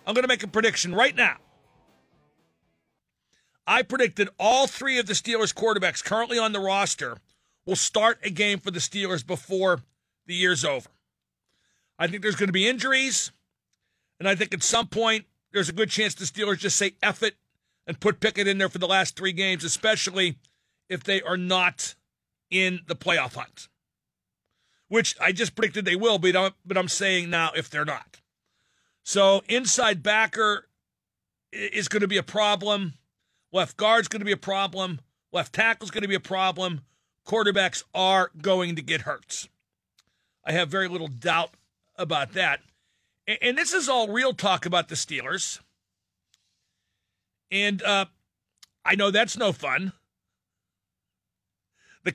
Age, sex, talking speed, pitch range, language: 50-69, male, 160 wpm, 170-210 Hz, English